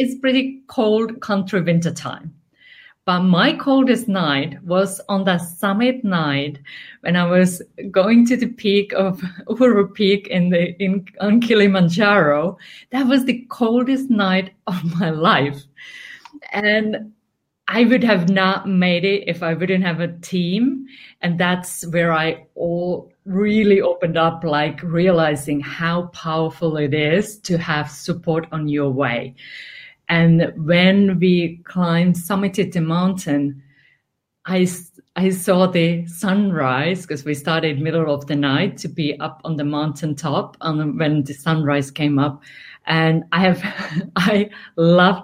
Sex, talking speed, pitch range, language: female, 140 wpm, 160-195 Hz, English